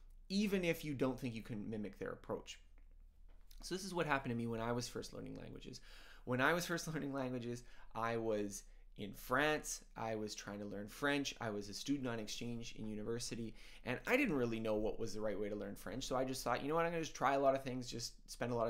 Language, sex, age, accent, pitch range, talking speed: English, male, 20-39, American, 115-145 Hz, 255 wpm